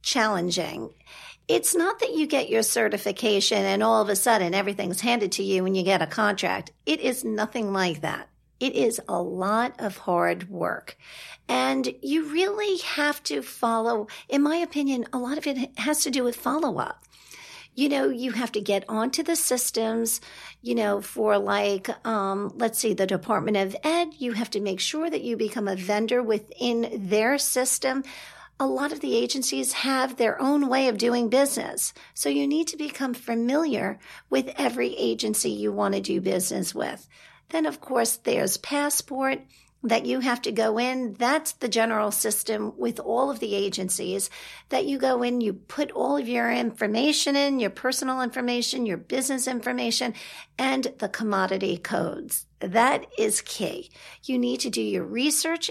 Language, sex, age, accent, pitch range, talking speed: English, female, 50-69, American, 210-280 Hz, 175 wpm